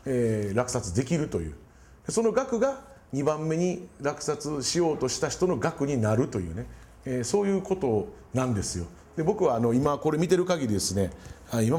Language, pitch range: Japanese, 95-155 Hz